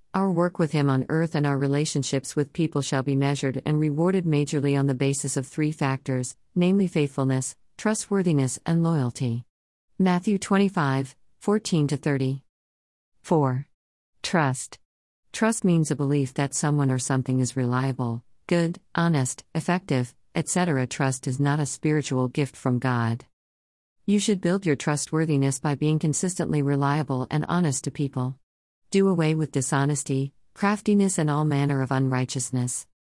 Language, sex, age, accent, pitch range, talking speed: English, female, 50-69, American, 130-170 Hz, 140 wpm